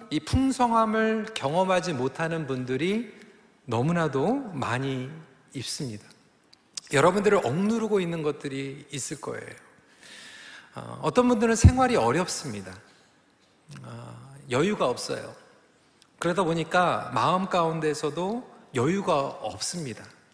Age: 40-59